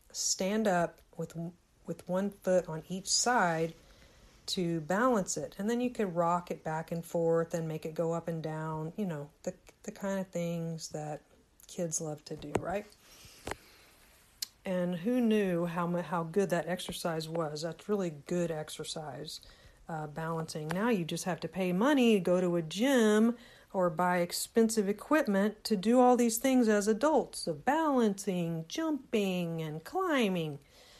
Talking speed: 160 wpm